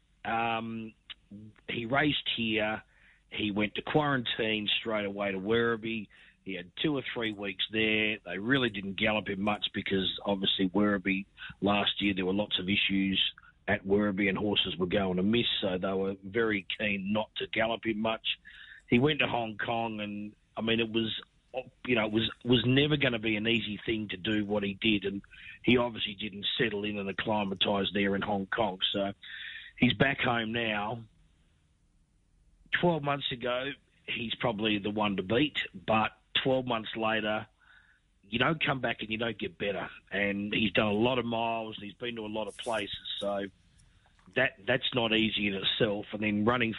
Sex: male